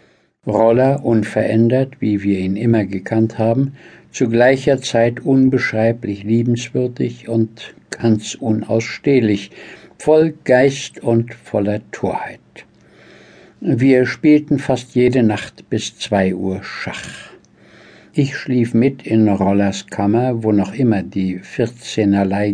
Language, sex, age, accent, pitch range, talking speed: German, male, 60-79, German, 105-130 Hz, 110 wpm